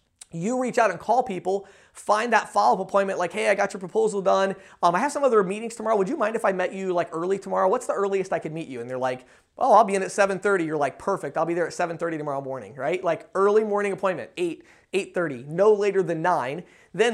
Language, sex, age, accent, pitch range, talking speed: English, male, 30-49, American, 170-215 Hz, 250 wpm